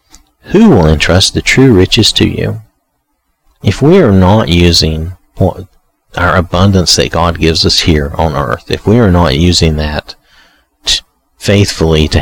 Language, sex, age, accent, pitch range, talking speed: English, male, 50-69, American, 80-100 Hz, 145 wpm